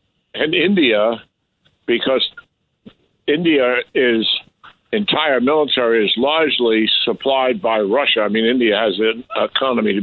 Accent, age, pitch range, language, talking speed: American, 60-79, 105-135 Hz, English, 110 wpm